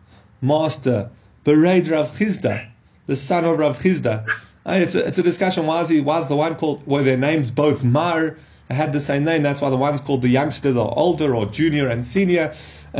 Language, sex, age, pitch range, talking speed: English, male, 30-49, 120-155 Hz, 200 wpm